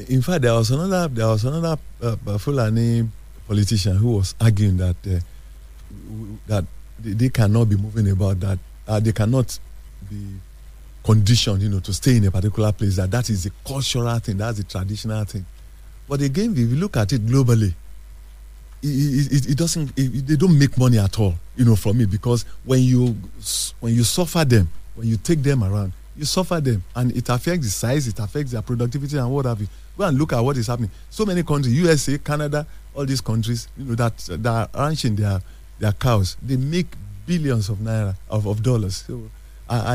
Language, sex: English, male